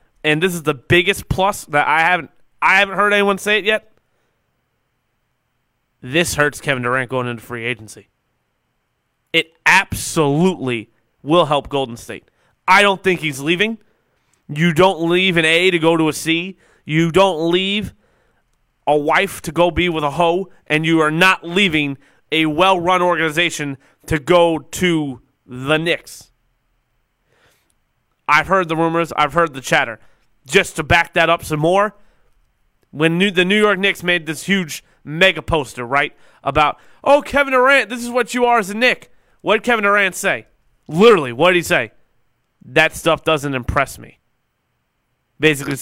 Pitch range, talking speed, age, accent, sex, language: 135-180 Hz, 160 wpm, 30-49, American, male, English